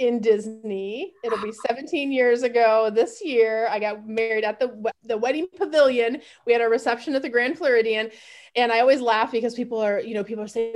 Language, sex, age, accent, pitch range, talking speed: English, female, 20-39, American, 220-275 Hz, 205 wpm